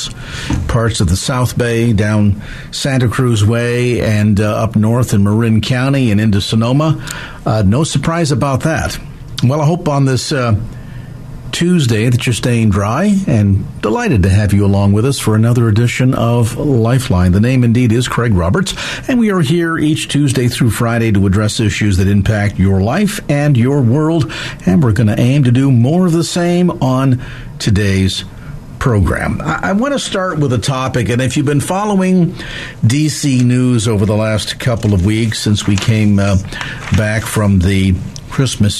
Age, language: 50-69, English